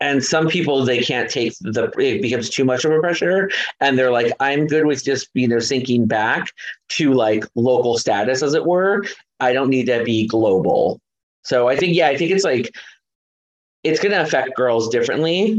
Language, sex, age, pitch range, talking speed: English, male, 30-49, 120-155 Hz, 195 wpm